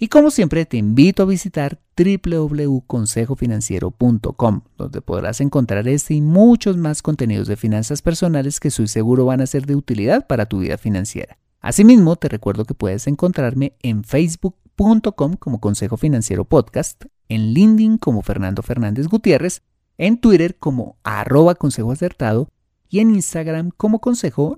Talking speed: 145 wpm